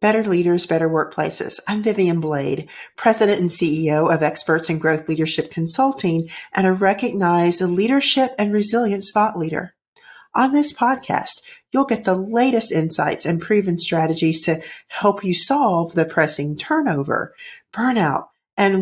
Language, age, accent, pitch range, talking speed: English, 50-69, American, 160-225 Hz, 140 wpm